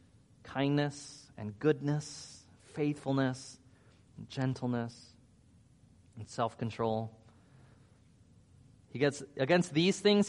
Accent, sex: American, male